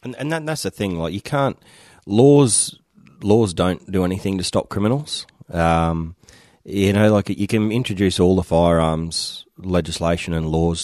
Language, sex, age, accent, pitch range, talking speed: English, male, 30-49, Australian, 85-95 Hz, 155 wpm